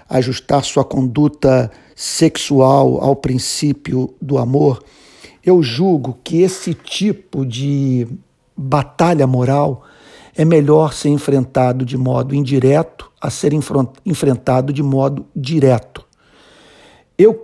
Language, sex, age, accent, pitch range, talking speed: Portuguese, male, 50-69, Brazilian, 130-160 Hz, 105 wpm